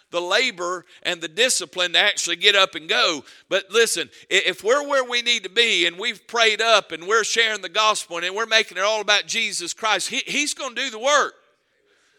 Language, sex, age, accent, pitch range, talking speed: English, male, 50-69, American, 175-230 Hz, 205 wpm